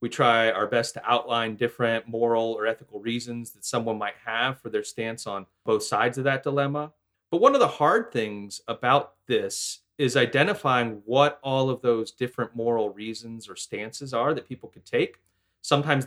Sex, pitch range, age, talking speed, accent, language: male, 105-145 Hz, 30-49, 185 wpm, American, English